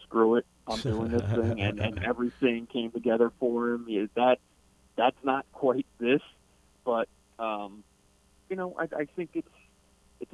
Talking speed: 170 wpm